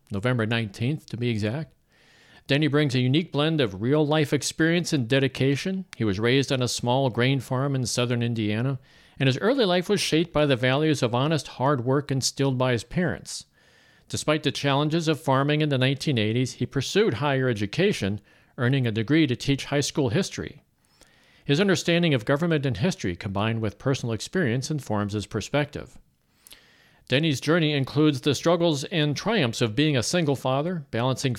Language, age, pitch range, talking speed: English, 50-69, 115-150 Hz, 170 wpm